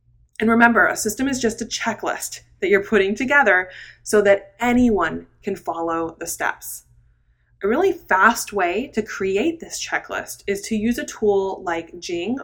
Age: 20-39